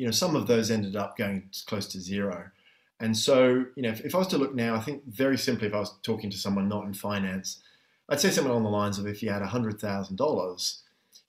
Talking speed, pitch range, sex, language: 245 wpm, 100-125 Hz, male, English